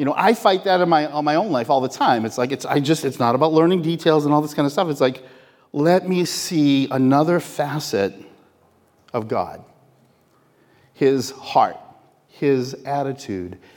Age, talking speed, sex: 40-59, 175 wpm, male